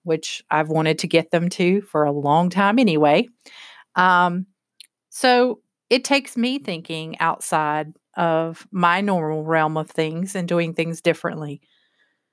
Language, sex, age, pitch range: English, female, 40-59, 155-180 Hz